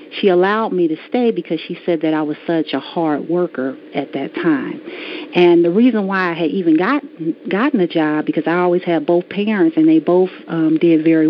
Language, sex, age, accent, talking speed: English, female, 40-59, American, 220 wpm